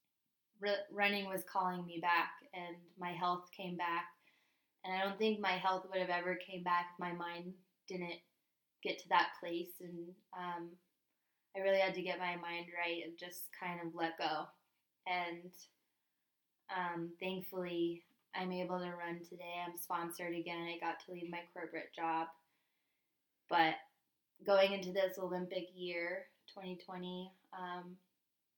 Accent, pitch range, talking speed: American, 175-185 Hz, 150 wpm